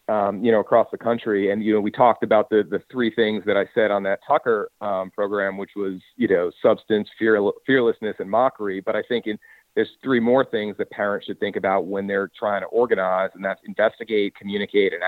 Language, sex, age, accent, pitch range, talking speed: English, male, 40-59, American, 100-115 Hz, 225 wpm